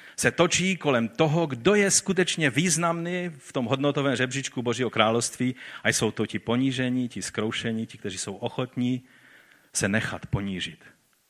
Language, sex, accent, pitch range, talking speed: Czech, male, native, 110-145 Hz, 150 wpm